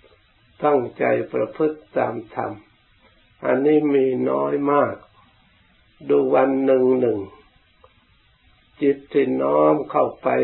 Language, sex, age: Thai, male, 60-79